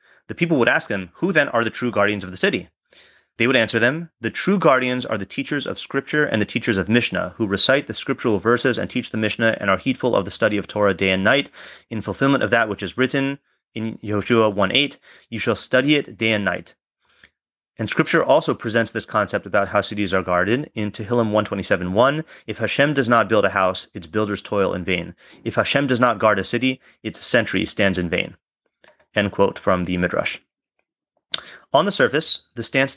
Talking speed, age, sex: 215 wpm, 30-49, male